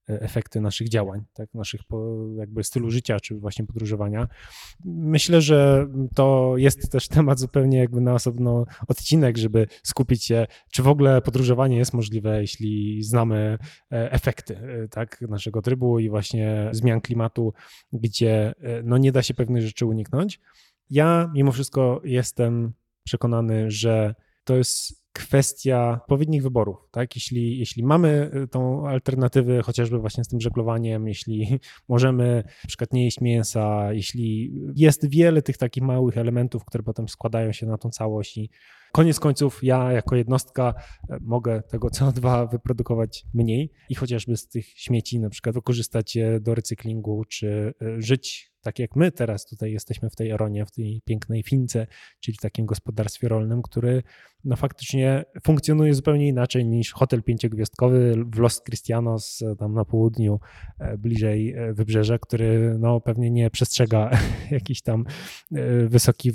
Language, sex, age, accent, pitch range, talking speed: Polish, male, 20-39, native, 110-130 Hz, 145 wpm